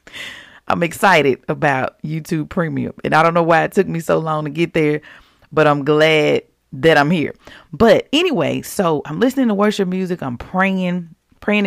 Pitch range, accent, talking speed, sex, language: 155-210 Hz, American, 180 wpm, female, English